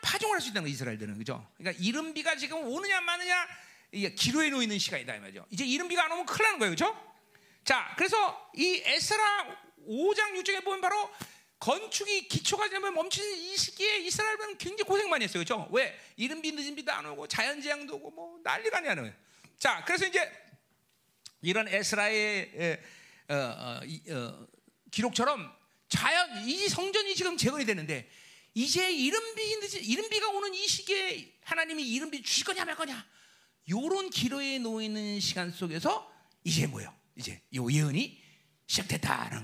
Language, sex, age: Korean, male, 40-59